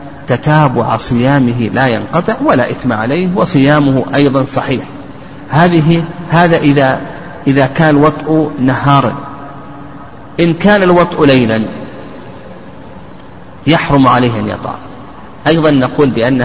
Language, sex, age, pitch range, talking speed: Arabic, male, 50-69, 125-155 Hz, 100 wpm